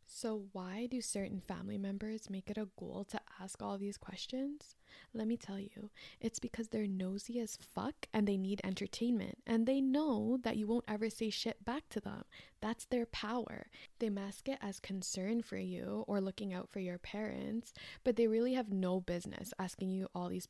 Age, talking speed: 10-29, 195 wpm